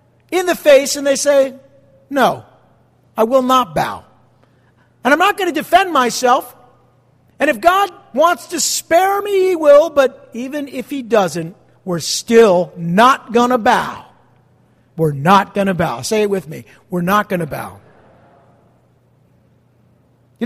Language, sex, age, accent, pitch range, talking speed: English, male, 50-69, American, 170-275 Hz, 155 wpm